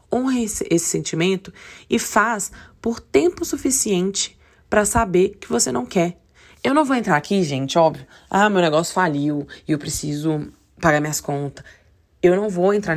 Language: Portuguese